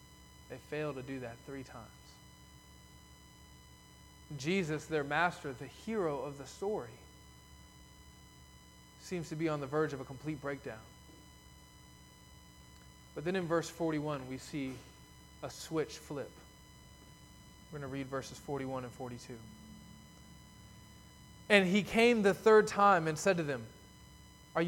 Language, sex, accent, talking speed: English, male, American, 130 wpm